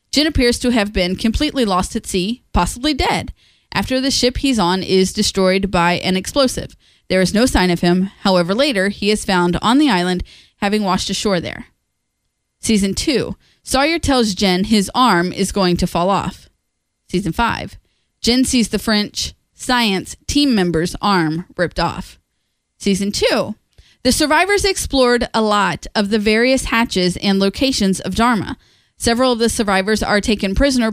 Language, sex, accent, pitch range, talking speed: English, female, American, 185-240 Hz, 165 wpm